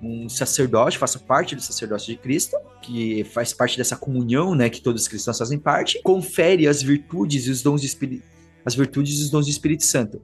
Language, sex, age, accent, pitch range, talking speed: Portuguese, male, 20-39, Brazilian, 130-180 Hz, 210 wpm